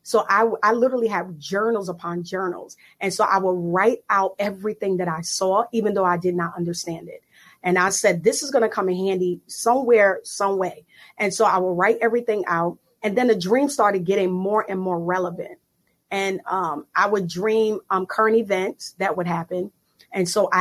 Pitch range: 180-215 Hz